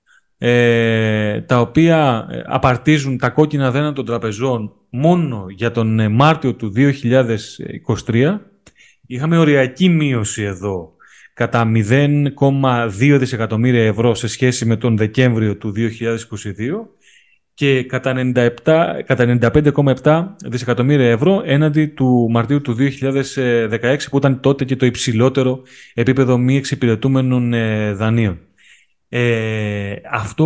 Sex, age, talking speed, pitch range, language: male, 30-49, 100 wpm, 120-155 Hz, Greek